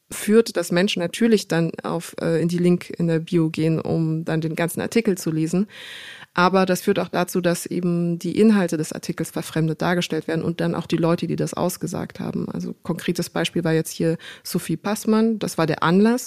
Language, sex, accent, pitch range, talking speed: German, female, German, 165-200 Hz, 205 wpm